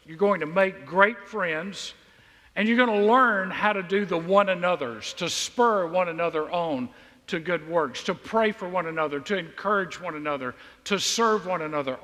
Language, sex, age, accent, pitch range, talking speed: English, male, 50-69, American, 160-210 Hz, 185 wpm